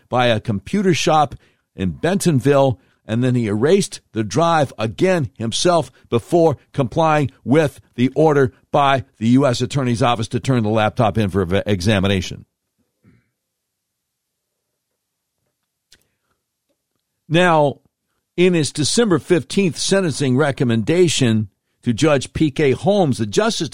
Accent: American